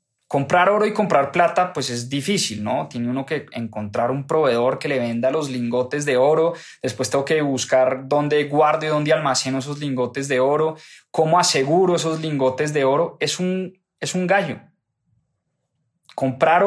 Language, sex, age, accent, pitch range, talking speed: English, male, 20-39, Colombian, 135-180 Hz, 165 wpm